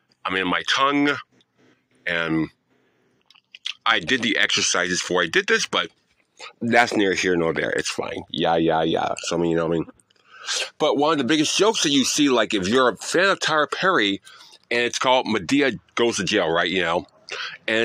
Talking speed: 200 wpm